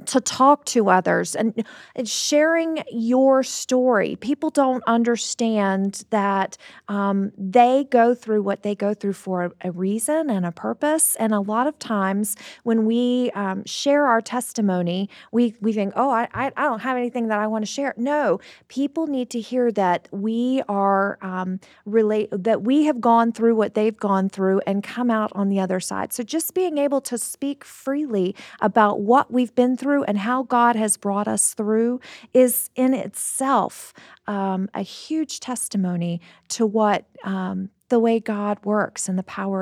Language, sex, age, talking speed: English, female, 40-59, 170 wpm